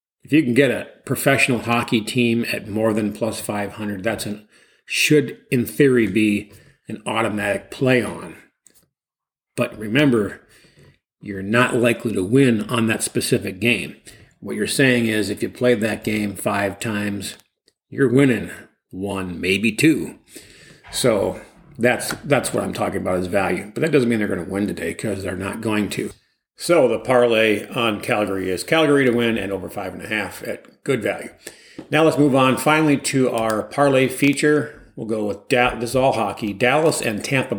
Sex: male